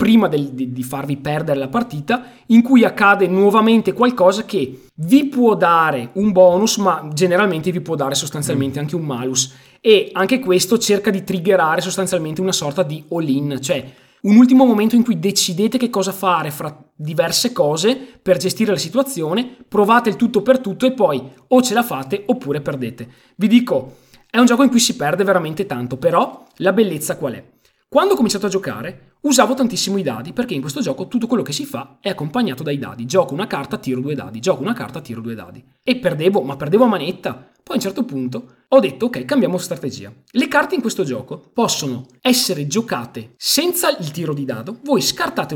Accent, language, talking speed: native, Italian, 195 wpm